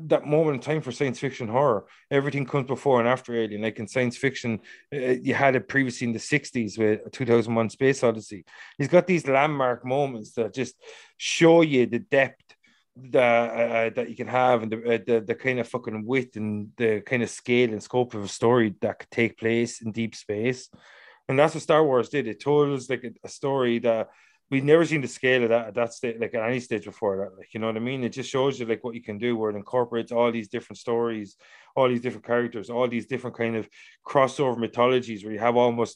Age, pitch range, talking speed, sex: 30-49, 115-130 Hz, 235 wpm, male